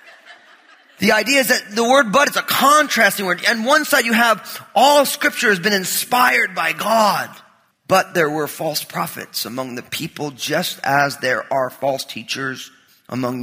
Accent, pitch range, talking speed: American, 175-235 Hz, 170 wpm